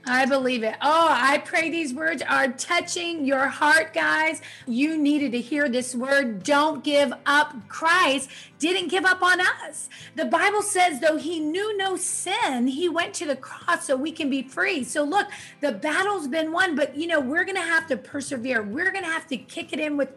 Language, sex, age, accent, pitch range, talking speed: English, female, 30-49, American, 255-320 Hz, 210 wpm